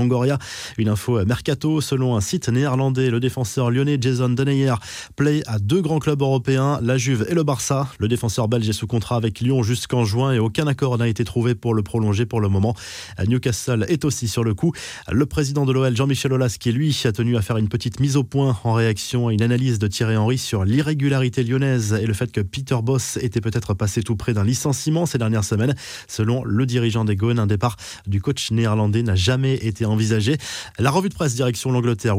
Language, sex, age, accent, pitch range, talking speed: French, male, 20-39, French, 115-135 Hz, 215 wpm